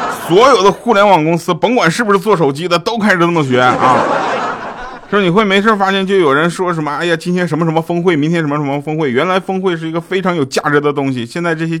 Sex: male